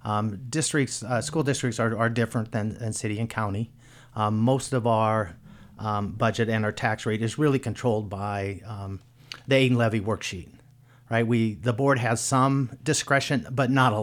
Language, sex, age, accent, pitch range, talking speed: English, male, 50-69, American, 105-125 Hz, 180 wpm